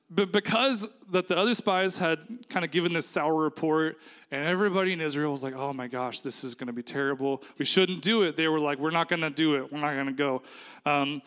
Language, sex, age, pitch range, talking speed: English, male, 20-39, 145-185 Hz, 250 wpm